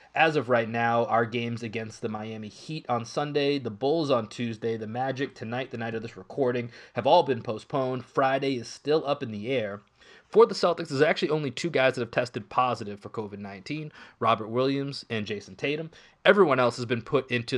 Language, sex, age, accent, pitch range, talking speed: English, male, 30-49, American, 115-140 Hz, 205 wpm